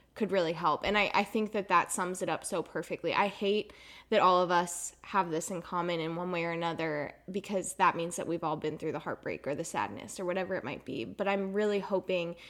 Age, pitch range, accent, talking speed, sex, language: 10-29, 175-215 Hz, American, 245 wpm, female, English